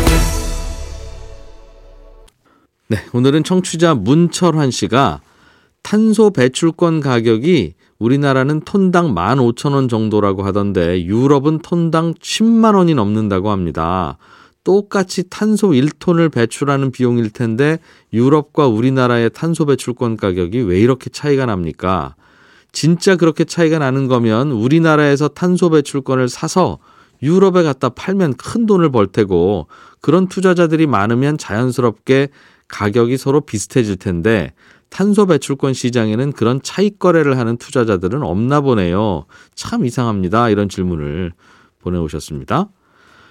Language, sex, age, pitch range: Korean, male, 40-59, 105-160 Hz